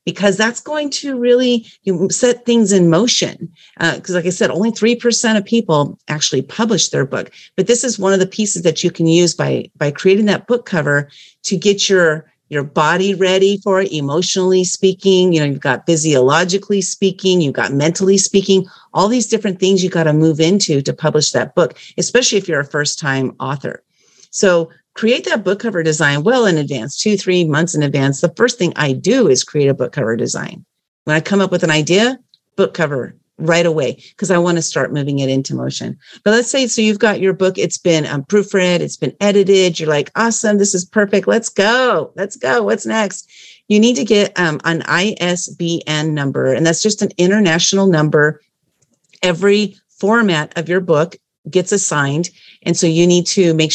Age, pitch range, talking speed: 40-59, 155-205 Hz, 200 wpm